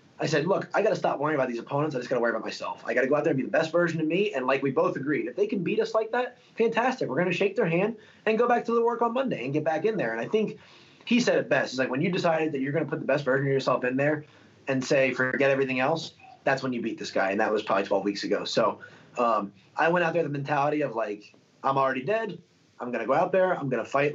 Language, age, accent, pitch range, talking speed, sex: English, 20-39, American, 130-175 Hz, 320 wpm, male